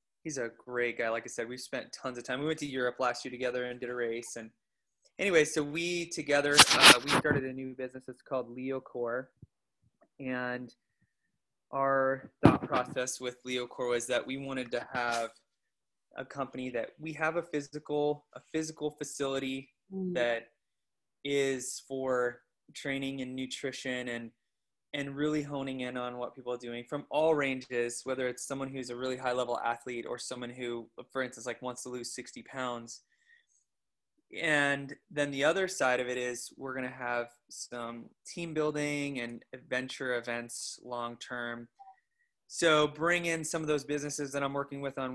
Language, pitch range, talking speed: English, 125-140 Hz, 170 wpm